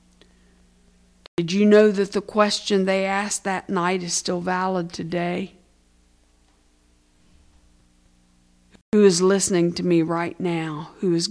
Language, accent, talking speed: English, American, 120 wpm